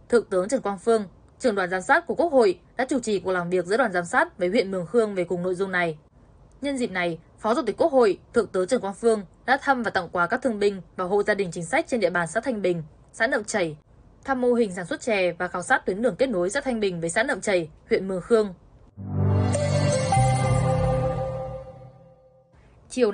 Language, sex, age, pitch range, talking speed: Vietnamese, female, 10-29, 180-230 Hz, 235 wpm